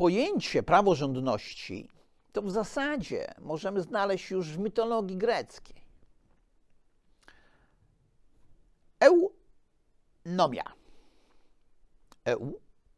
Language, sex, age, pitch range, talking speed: Polish, male, 50-69, 130-195 Hz, 65 wpm